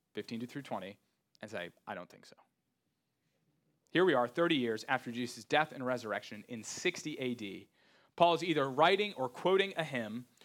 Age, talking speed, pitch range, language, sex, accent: 30-49, 170 wpm, 130-175 Hz, English, male, American